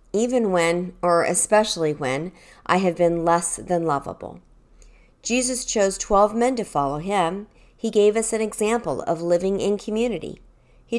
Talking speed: 155 wpm